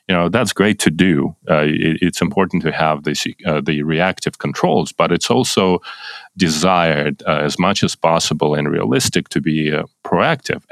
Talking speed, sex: 180 wpm, male